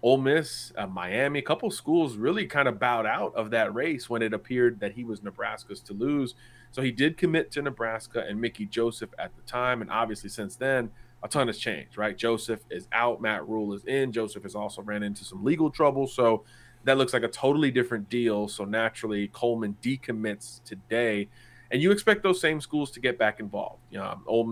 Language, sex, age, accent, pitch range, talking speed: English, male, 30-49, American, 105-120 Hz, 205 wpm